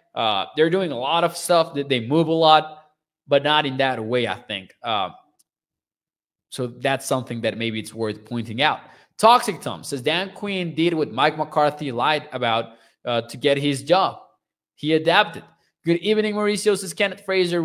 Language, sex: English, male